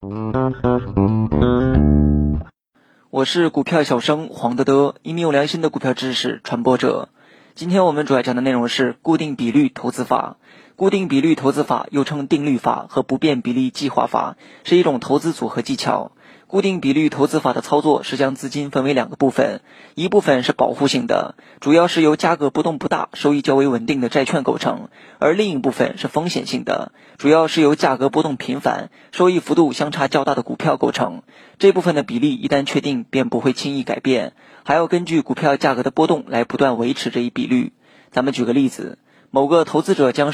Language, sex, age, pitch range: Chinese, male, 20-39, 130-165 Hz